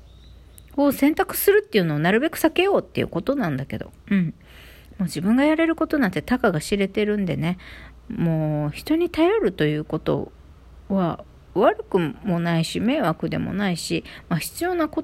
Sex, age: female, 40-59